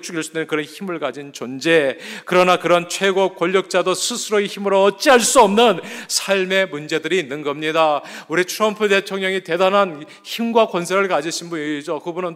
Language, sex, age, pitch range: Korean, male, 40-59, 150-190 Hz